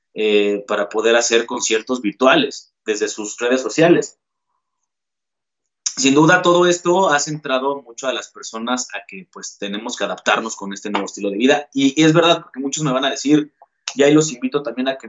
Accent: Mexican